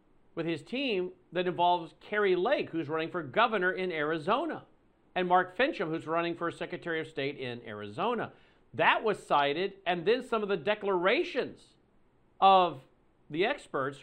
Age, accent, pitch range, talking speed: 50-69, American, 150-250 Hz, 155 wpm